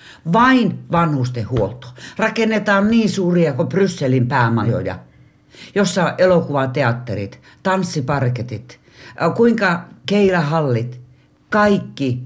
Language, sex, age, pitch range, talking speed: Finnish, female, 60-79, 125-180 Hz, 70 wpm